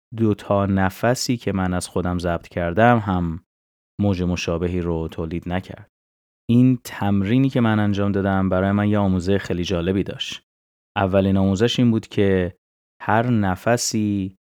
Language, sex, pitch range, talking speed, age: Persian, male, 90-105 Hz, 140 wpm, 30-49